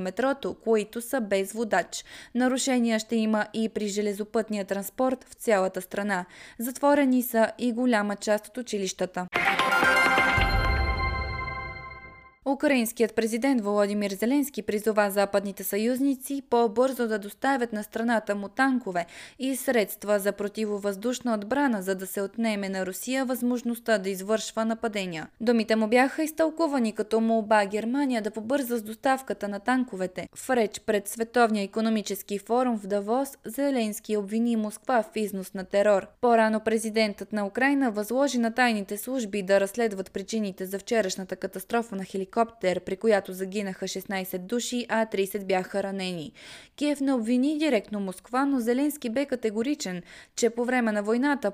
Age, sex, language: 20-39, female, Bulgarian